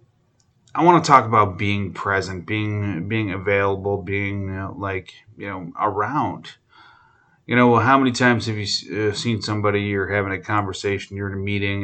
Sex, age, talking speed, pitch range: male, 30-49, 170 wpm, 95-115 Hz